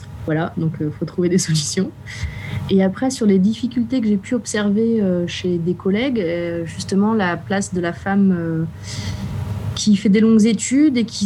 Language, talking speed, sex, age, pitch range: French, 190 wpm, female, 30-49, 165-195 Hz